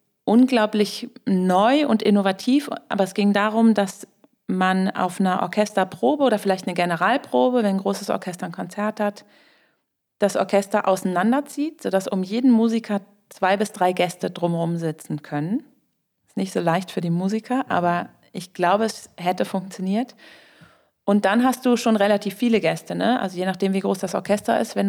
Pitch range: 190-230 Hz